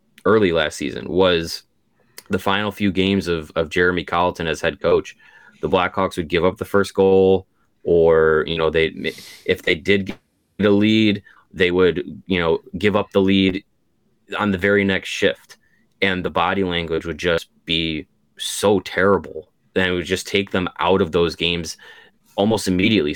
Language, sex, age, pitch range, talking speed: English, male, 20-39, 85-100 Hz, 175 wpm